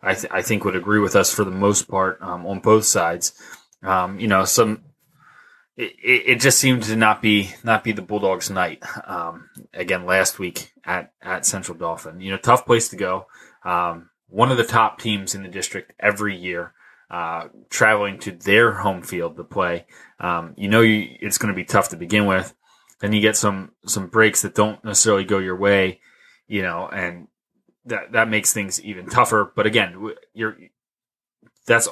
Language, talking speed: English, 190 wpm